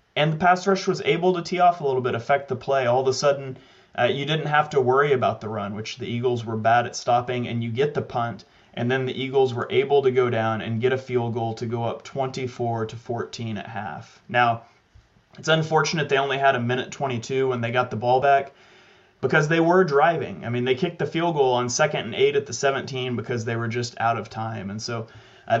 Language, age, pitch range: English, 30-49, 120-145 Hz